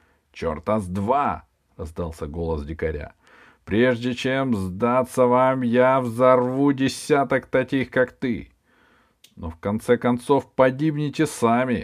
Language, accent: Russian, native